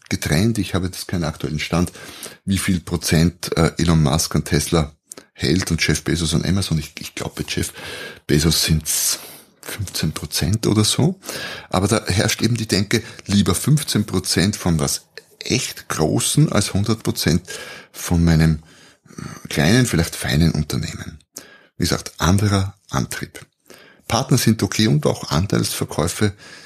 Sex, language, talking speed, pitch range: male, German, 140 wpm, 85-105 Hz